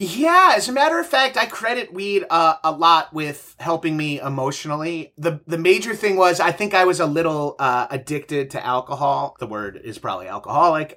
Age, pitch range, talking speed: 30-49, 140-175 Hz, 195 wpm